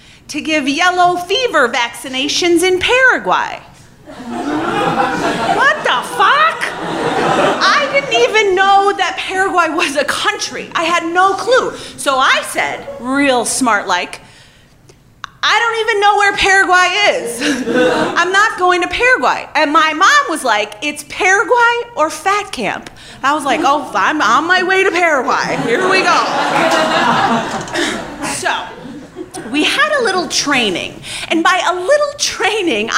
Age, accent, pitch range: 30-49, American, 285-375 Hz